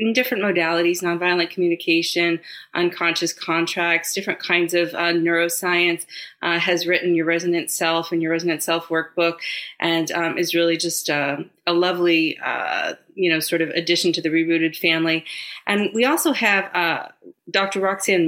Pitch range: 160-180 Hz